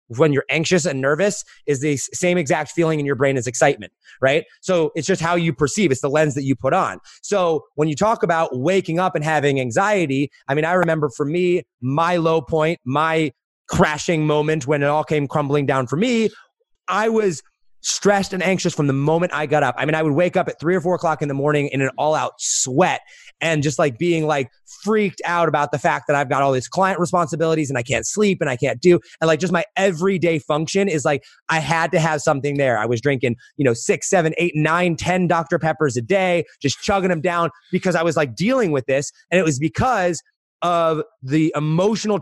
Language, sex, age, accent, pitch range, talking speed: English, male, 30-49, American, 145-180 Hz, 225 wpm